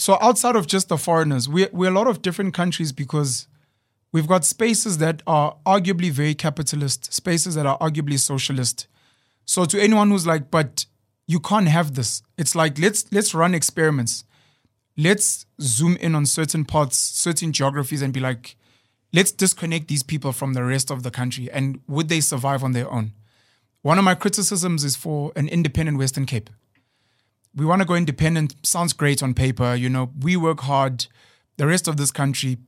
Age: 20-39